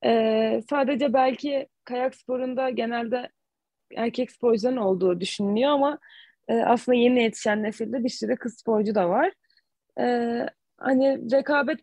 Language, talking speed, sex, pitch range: Turkish, 125 wpm, female, 215-255 Hz